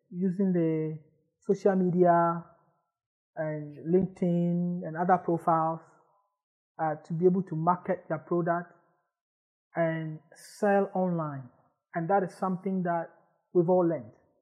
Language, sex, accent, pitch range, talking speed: English, male, Nigerian, 165-185 Hz, 115 wpm